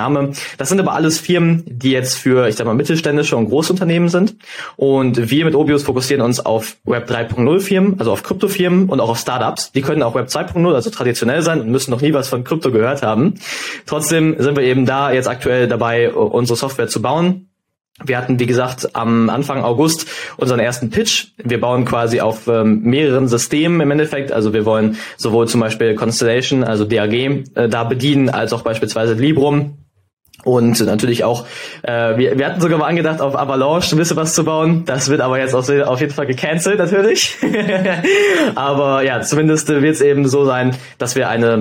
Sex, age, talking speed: male, 20-39, 190 wpm